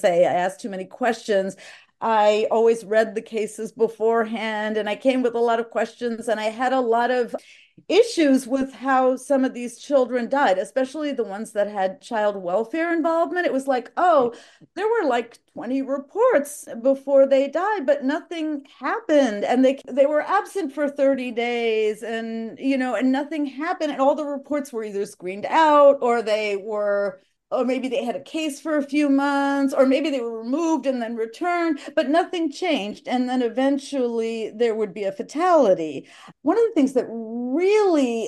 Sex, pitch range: female, 225-285 Hz